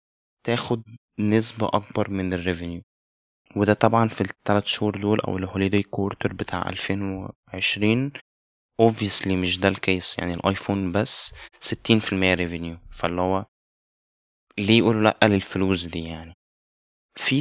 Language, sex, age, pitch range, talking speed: Arabic, male, 20-39, 95-115 Hz, 115 wpm